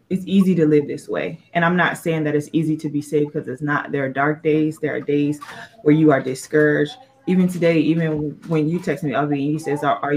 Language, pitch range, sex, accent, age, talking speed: English, 150-170 Hz, female, American, 20-39, 250 wpm